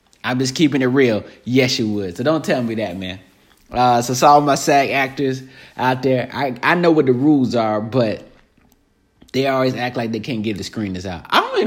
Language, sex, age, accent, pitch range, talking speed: English, male, 30-49, American, 105-140 Hz, 225 wpm